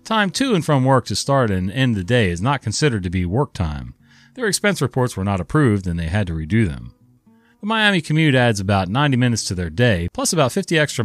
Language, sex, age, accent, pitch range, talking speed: English, male, 40-59, American, 95-145 Hz, 240 wpm